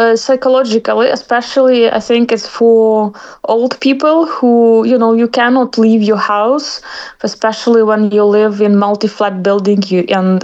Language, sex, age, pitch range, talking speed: English, female, 20-39, 200-245 Hz, 145 wpm